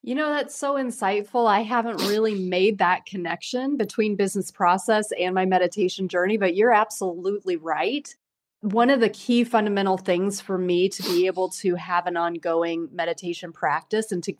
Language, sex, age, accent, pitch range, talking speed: English, female, 30-49, American, 180-215 Hz, 170 wpm